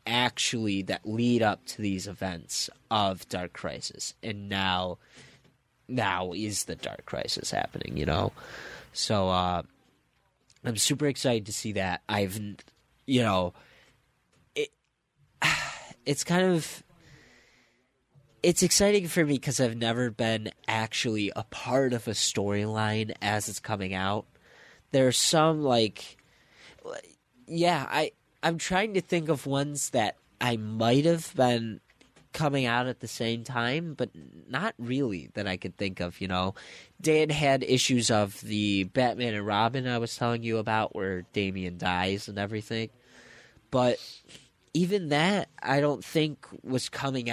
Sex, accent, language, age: male, American, English, 20-39